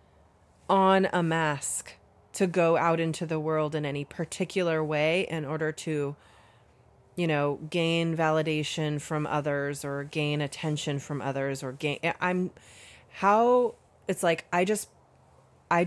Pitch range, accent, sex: 145-175 Hz, American, female